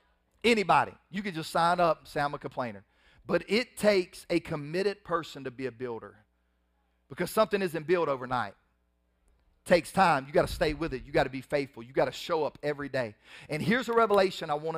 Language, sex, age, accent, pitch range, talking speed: English, male, 40-59, American, 160-250 Hz, 215 wpm